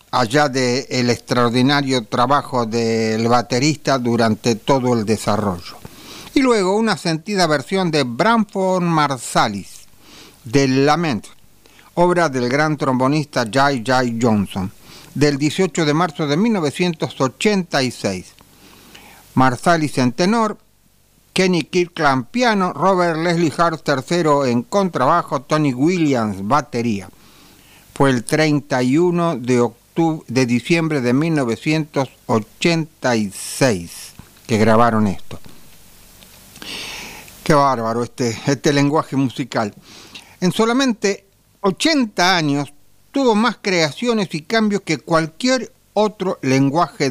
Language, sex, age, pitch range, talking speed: English, male, 50-69, 120-175 Hz, 100 wpm